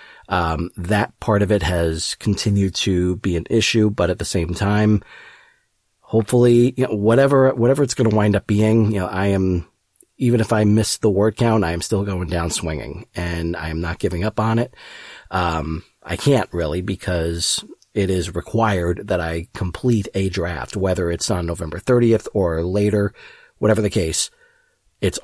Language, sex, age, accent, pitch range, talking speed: English, male, 40-59, American, 85-110 Hz, 180 wpm